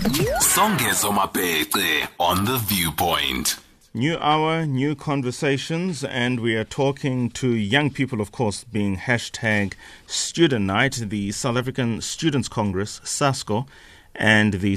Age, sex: 30-49, male